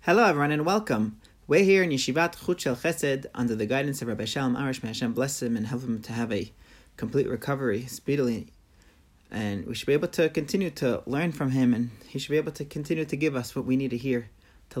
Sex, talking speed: male, 230 wpm